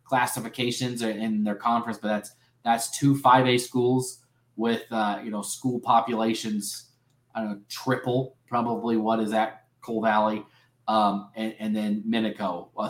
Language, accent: English, American